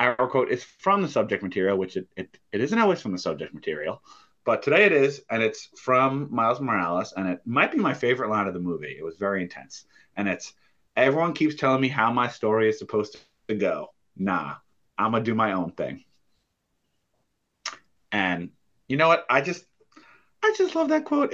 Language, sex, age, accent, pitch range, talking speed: English, male, 30-49, American, 95-135 Hz, 200 wpm